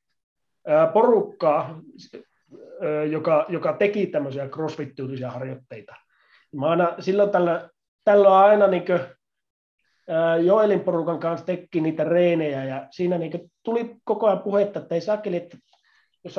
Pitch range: 150-200 Hz